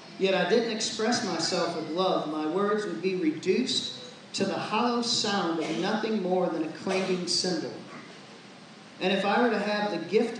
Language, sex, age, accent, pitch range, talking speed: English, male, 40-59, American, 175-220 Hz, 180 wpm